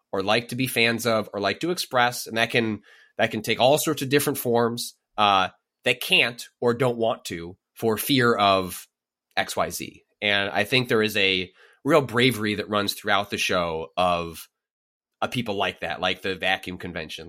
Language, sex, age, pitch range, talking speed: English, male, 20-39, 110-155 Hz, 190 wpm